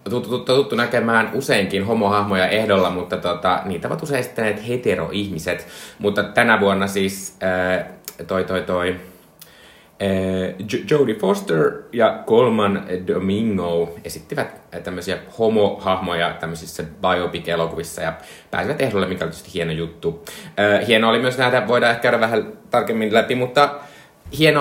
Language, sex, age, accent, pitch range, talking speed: Finnish, male, 30-49, native, 90-125 Hz, 130 wpm